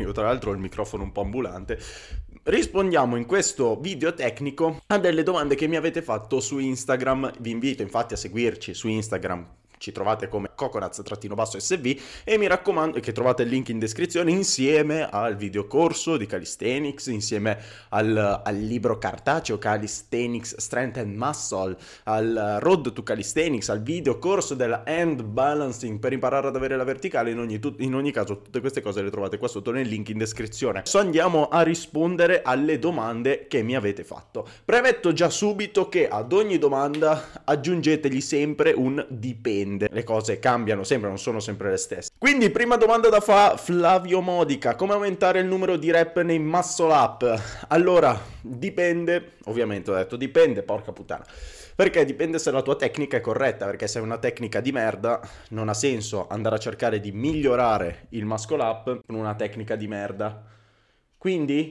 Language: Italian